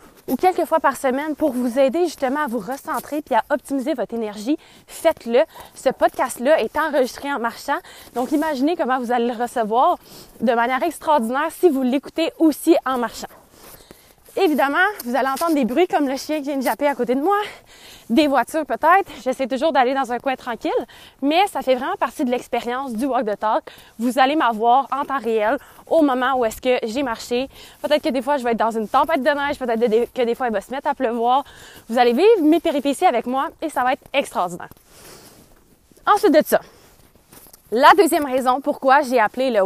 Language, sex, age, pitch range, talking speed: French, female, 20-39, 240-310 Hz, 205 wpm